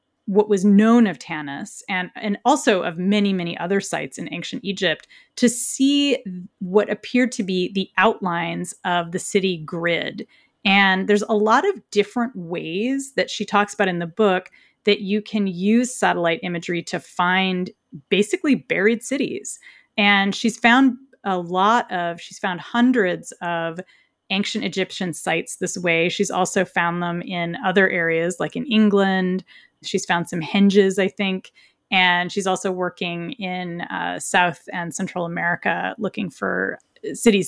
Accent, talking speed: American, 155 wpm